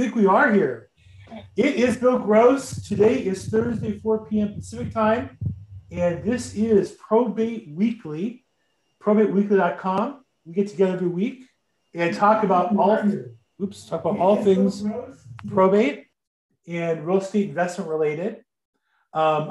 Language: English